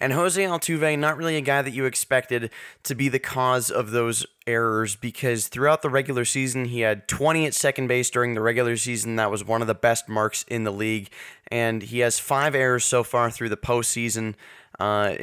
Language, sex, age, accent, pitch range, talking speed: English, male, 20-39, American, 115-130 Hz, 210 wpm